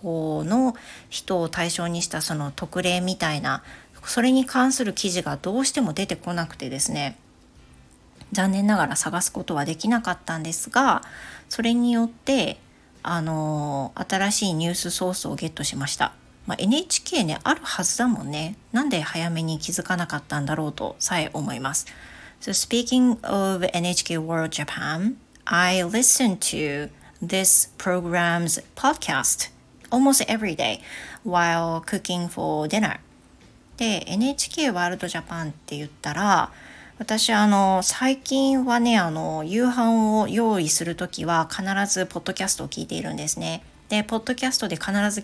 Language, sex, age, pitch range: Japanese, female, 40-59, 165-225 Hz